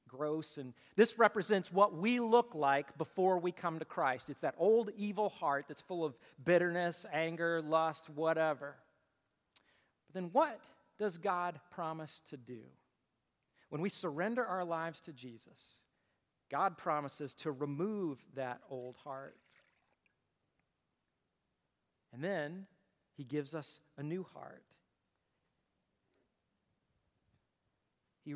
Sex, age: male, 40-59